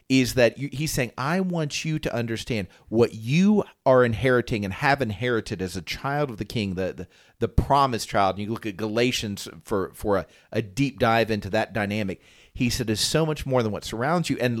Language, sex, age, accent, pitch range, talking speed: English, male, 40-59, American, 110-145 Hz, 220 wpm